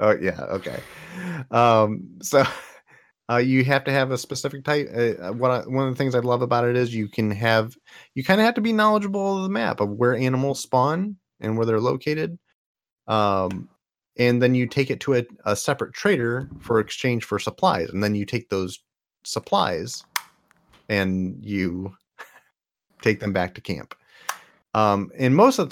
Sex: male